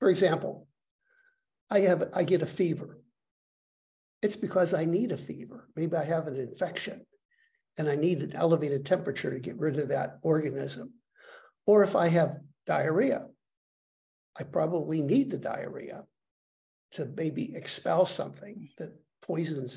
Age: 60-79